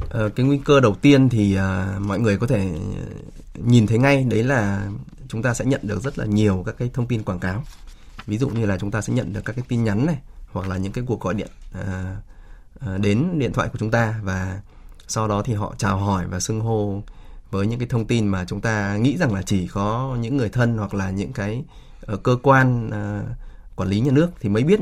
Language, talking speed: Vietnamese, 230 wpm